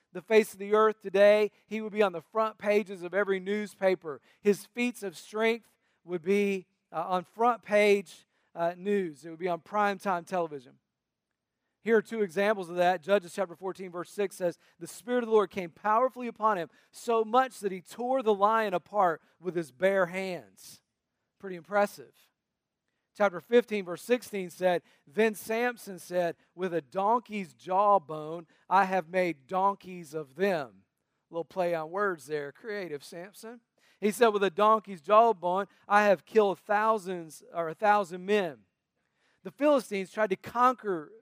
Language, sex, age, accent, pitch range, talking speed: English, male, 40-59, American, 175-215 Hz, 165 wpm